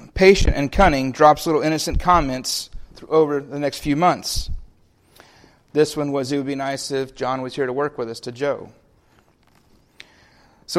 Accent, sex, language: American, male, English